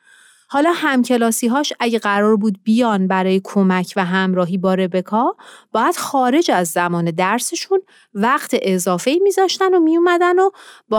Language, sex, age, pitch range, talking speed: Persian, female, 30-49, 185-260 Hz, 130 wpm